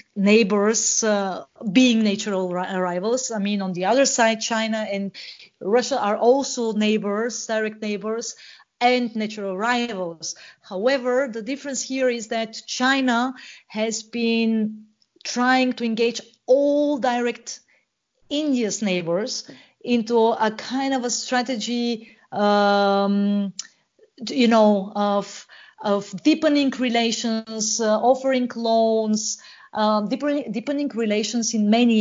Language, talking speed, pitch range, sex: English, 110 wpm, 205-250 Hz, female